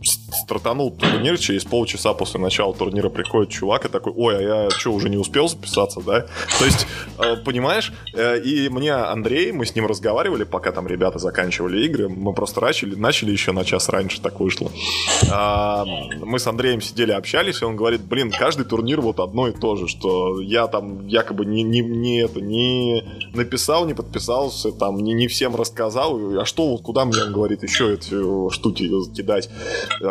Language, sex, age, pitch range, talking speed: Russian, male, 20-39, 100-125 Hz, 165 wpm